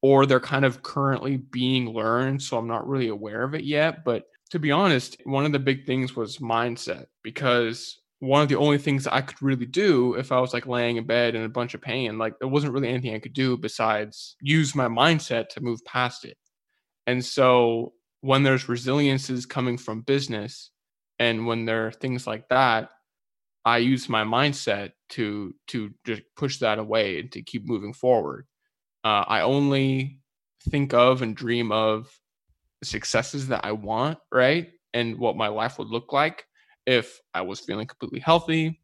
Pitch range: 115-135 Hz